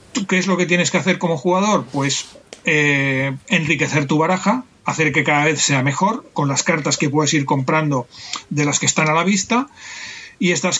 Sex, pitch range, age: male, 145-180 Hz, 40-59